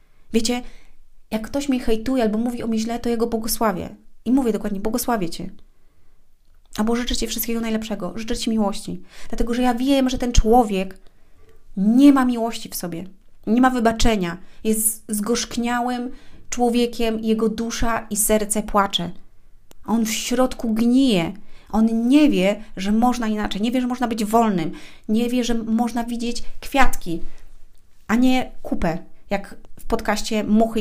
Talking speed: 155 wpm